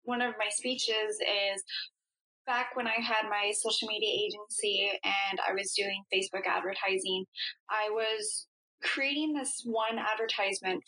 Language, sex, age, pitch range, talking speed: English, female, 10-29, 205-275 Hz, 140 wpm